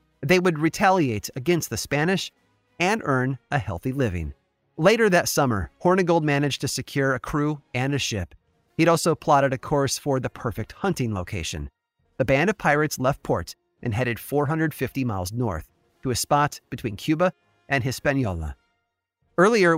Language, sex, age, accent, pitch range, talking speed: English, male, 30-49, American, 115-160 Hz, 160 wpm